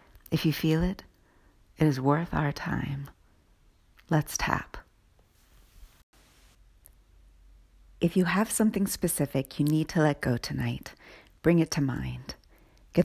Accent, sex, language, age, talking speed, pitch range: American, female, English, 40-59, 125 wpm, 140-180 Hz